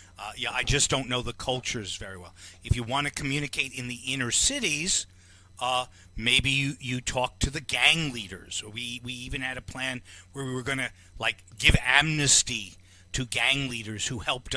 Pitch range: 90-130 Hz